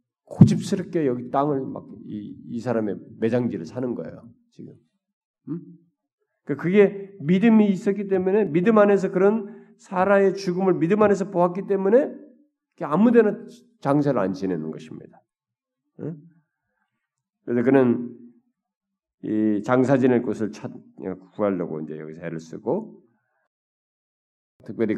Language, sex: Korean, male